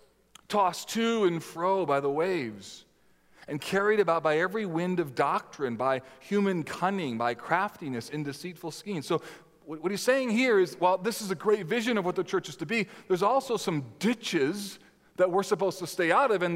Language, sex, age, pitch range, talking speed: English, male, 40-59, 160-205 Hz, 195 wpm